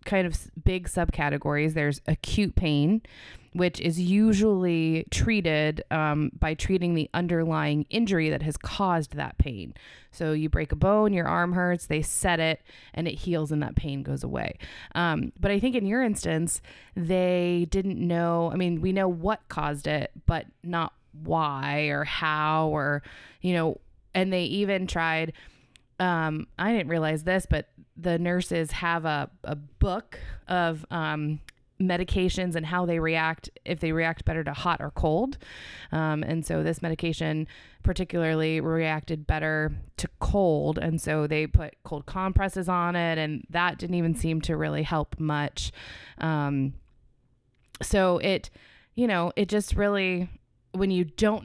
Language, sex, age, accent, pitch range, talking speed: English, female, 20-39, American, 150-180 Hz, 155 wpm